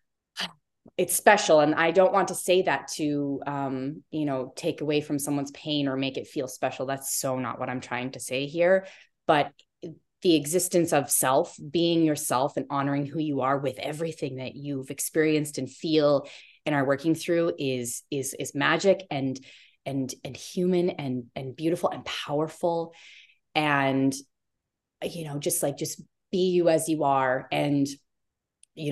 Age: 20-39